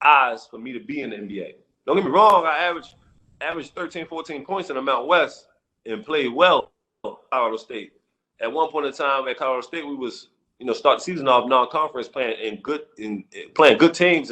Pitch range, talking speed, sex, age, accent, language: 115-160 Hz, 220 wpm, male, 30-49, American, English